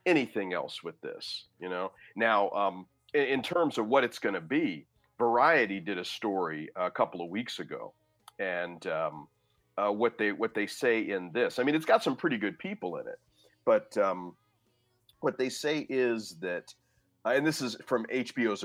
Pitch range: 100-165 Hz